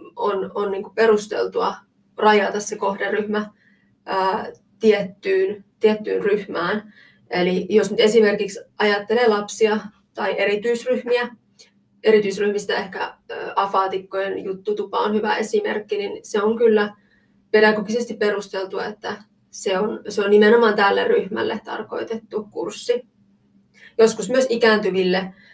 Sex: female